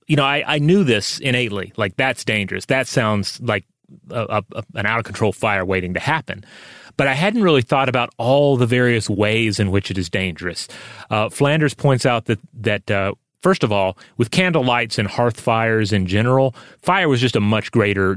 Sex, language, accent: male, English, American